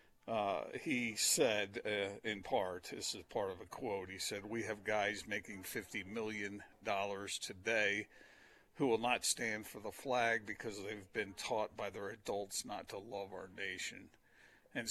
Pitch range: 115-145 Hz